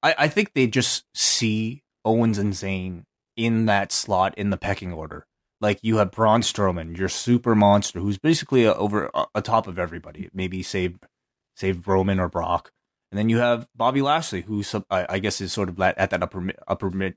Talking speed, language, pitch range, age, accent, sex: 200 wpm, English, 95-120 Hz, 20-39, American, male